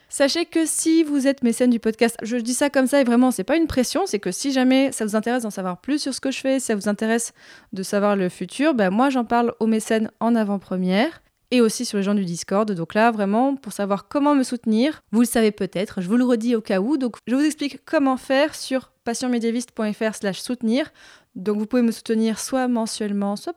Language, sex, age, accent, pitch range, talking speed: French, female, 20-39, French, 210-265 Hz, 235 wpm